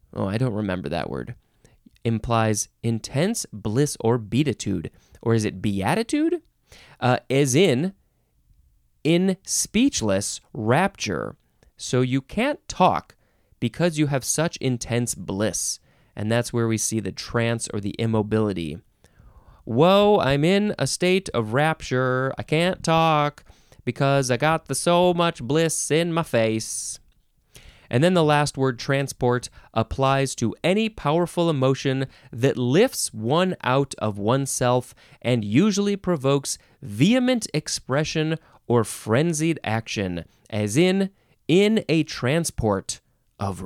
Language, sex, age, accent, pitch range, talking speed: English, male, 20-39, American, 110-160 Hz, 125 wpm